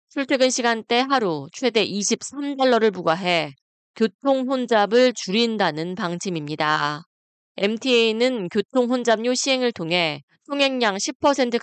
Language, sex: Korean, female